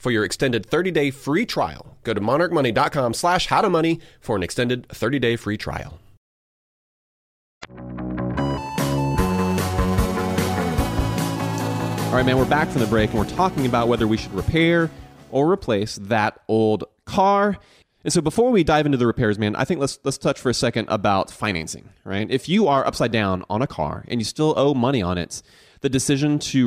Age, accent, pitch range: 30-49, American, 105-150 Hz